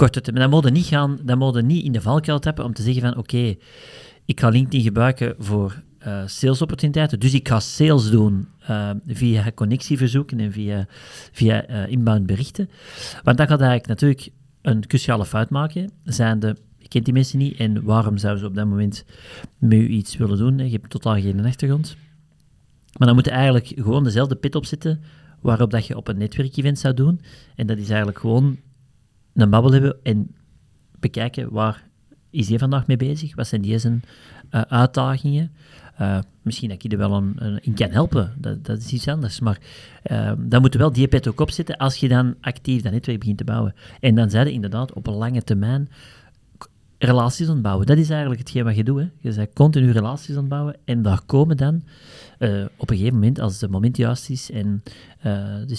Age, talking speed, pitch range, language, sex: 40-59, 200 wpm, 110-140 Hz, Dutch, male